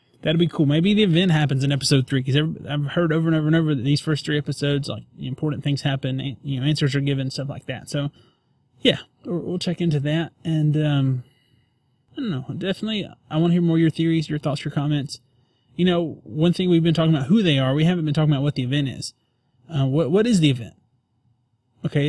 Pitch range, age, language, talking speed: 135-160 Hz, 20-39, English, 235 wpm